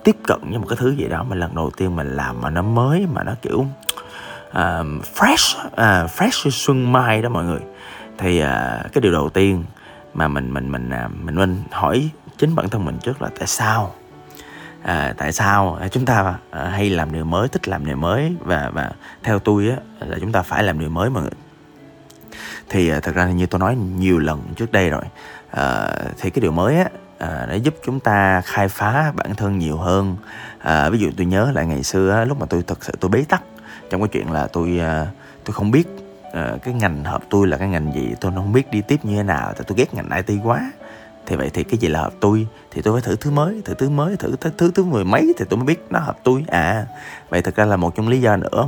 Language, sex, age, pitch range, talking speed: Vietnamese, male, 20-39, 85-125 Hz, 240 wpm